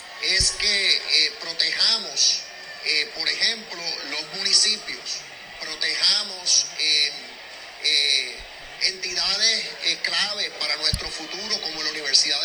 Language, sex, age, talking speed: Spanish, male, 40-59, 100 wpm